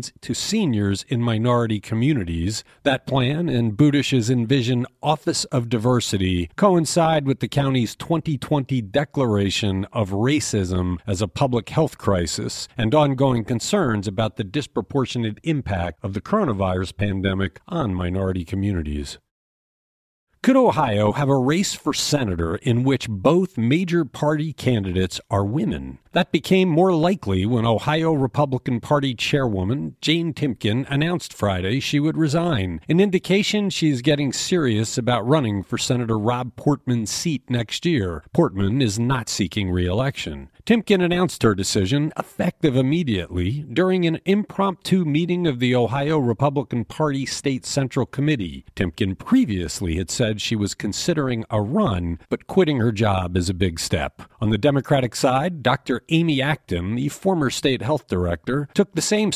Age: 50-69